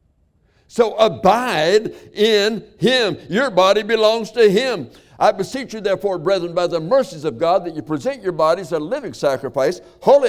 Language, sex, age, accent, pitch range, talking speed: English, male, 60-79, American, 100-160 Hz, 165 wpm